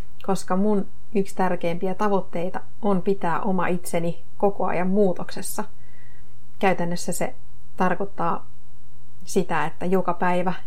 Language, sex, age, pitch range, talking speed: Finnish, female, 30-49, 120-190 Hz, 105 wpm